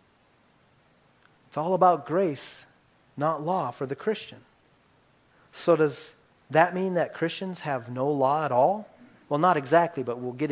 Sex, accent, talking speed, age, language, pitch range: male, American, 150 wpm, 40-59, English, 150-220 Hz